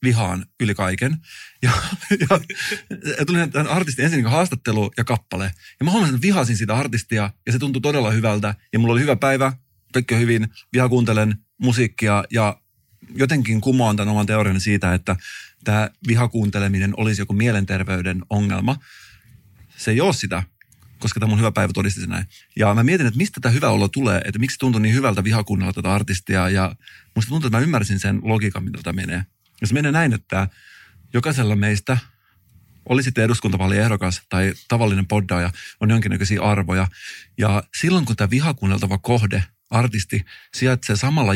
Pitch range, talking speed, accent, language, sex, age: 100-125 Hz, 160 wpm, native, Finnish, male, 30-49